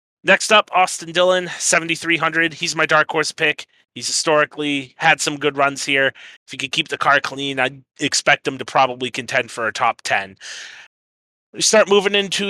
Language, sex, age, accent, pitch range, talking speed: English, male, 30-49, American, 130-165 Hz, 180 wpm